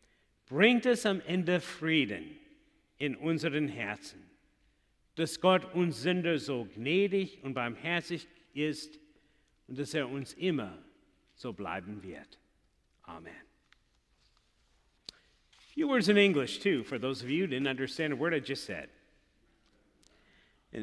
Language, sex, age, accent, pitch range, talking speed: English, male, 50-69, American, 145-240 Hz, 125 wpm